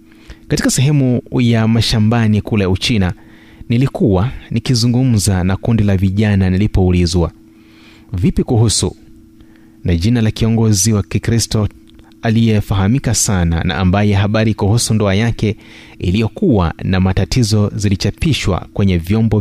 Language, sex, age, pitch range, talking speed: Swahili, male, 30-49, 95-120 Hz, 110 wpm